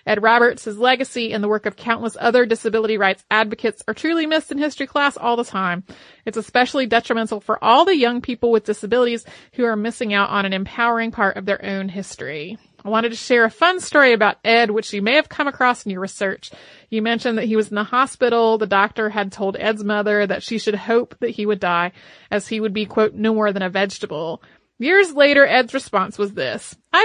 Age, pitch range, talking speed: 30-49, 205-260 Hz, 220 wpm